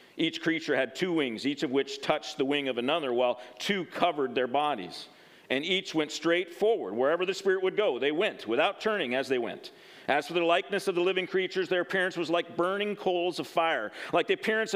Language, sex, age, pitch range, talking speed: English, male, 50-69, 155-195 Hz, 220 wpm